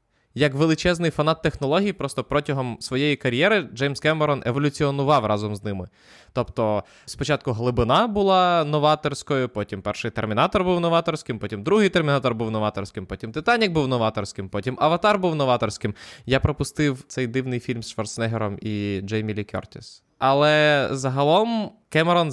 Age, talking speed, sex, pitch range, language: 20-39, 135 wpm, male, 115-150 Hz, Ukrainian